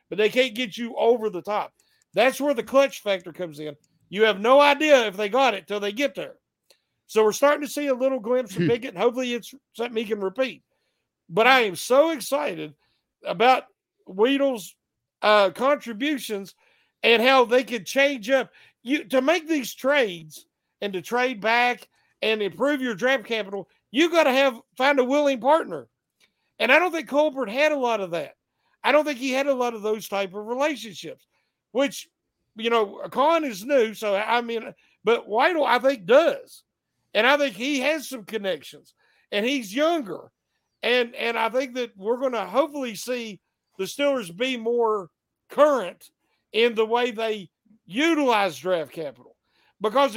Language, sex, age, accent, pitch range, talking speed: English, male, 50-69, American, 215-280 Hz, 180 wpm